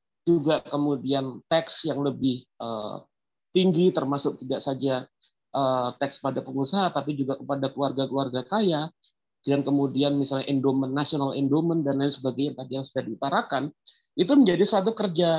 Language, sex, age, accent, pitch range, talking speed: Indonesian, male, 40-59, native, 140-190 Hz, 145 wpm